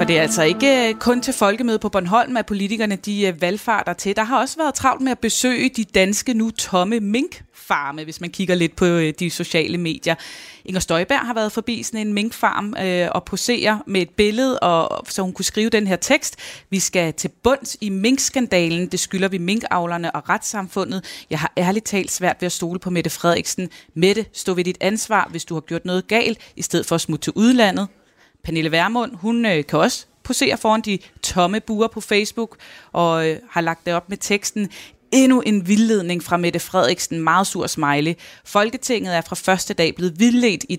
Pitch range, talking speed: 170-220 Hz, 195 wpm